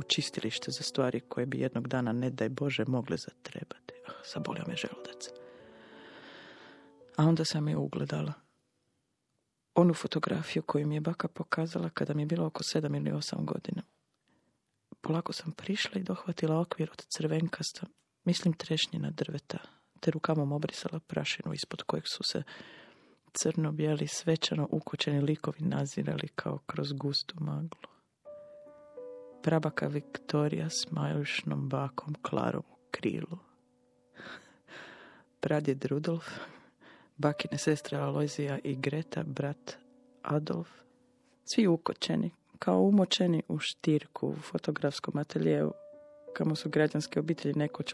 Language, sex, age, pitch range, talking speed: Croatian, female, 30-49, 140-170 Hz, 120 wpm